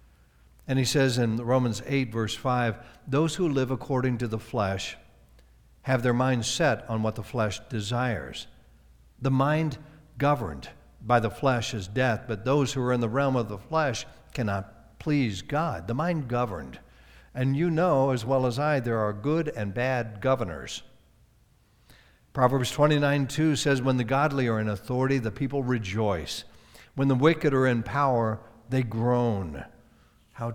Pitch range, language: 110-135 Hz, English